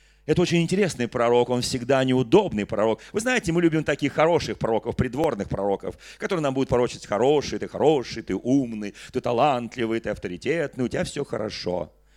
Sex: male